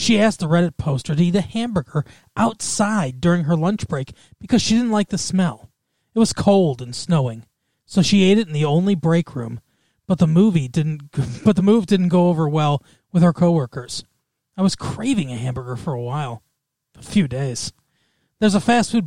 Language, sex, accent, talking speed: English, male, American, 200 wpm